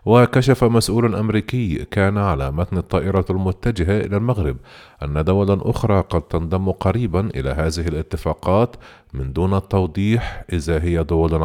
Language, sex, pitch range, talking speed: Arabic, male, 80-110 Hz, 130 wpm